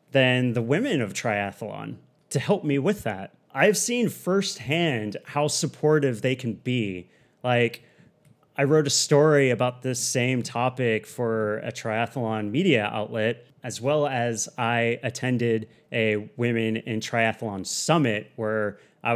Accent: American